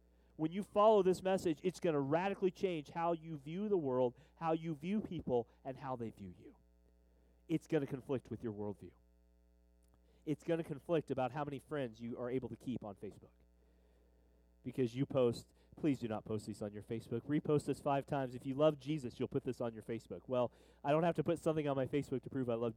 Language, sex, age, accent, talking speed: English, male, 30-49, American, 225 wpm